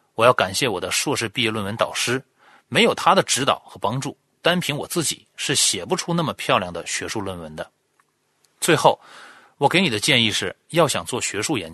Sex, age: male, 30-49